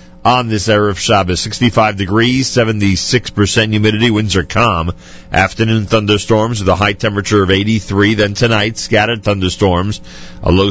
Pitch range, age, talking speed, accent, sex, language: 90-115 Hz, 40-59, 145 wpm, American, male, English